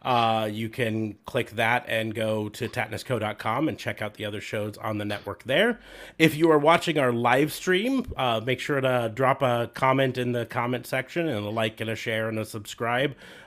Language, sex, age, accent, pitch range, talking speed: English, male, 30-49, American, 115-155 Hz, 205 wpm